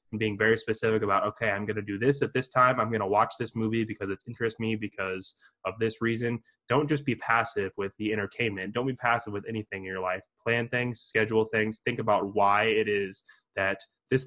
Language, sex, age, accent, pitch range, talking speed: English, male, 20-39, American, 105-115 Hz, 225 wpm